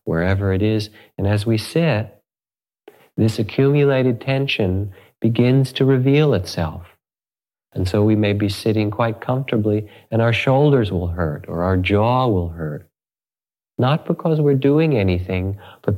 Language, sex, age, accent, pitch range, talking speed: English, male, 50-69, American, 95-125 Hz, 145 wpm